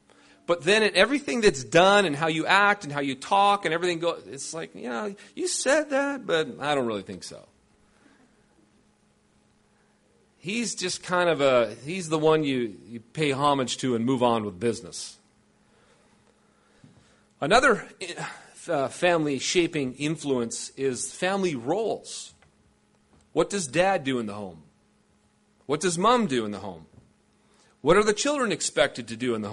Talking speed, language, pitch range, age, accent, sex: 155 wpm, English, 135-195 Hz, 40-59, American, male